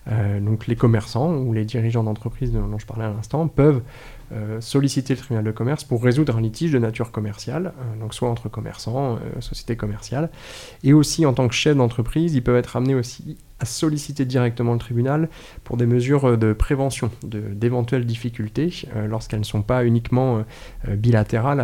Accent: French